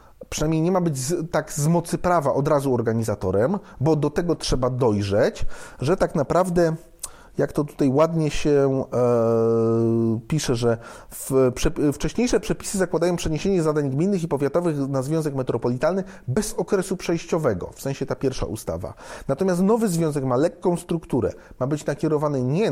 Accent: native